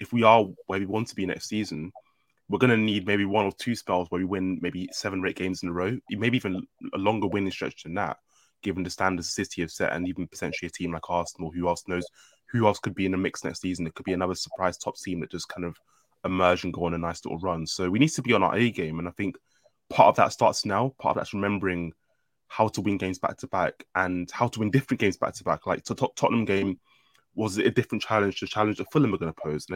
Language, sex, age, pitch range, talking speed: English, male, 20-39, 90-105 Hz, 275 wpm